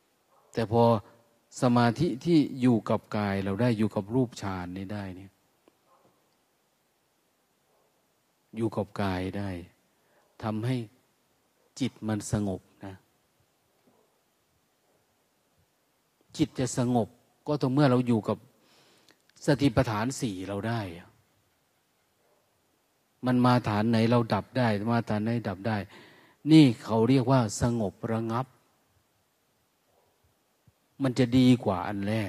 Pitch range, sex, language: 105-135 Hz, male, Thai